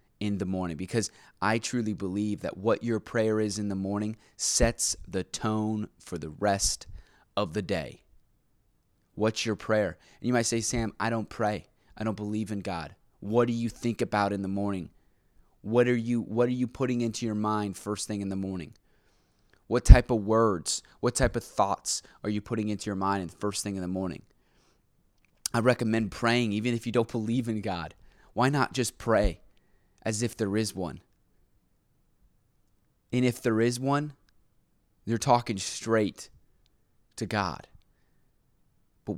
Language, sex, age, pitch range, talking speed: English, male, 20-39, 100-120 Hz, 170 wpm